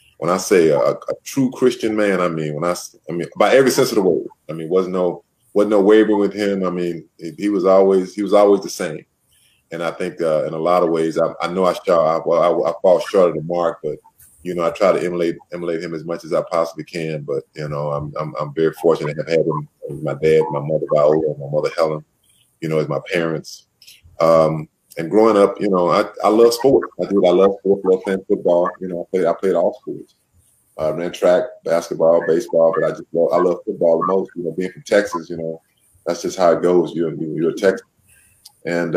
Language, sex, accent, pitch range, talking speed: English, male, American, 80-95 Hz, 250 wpm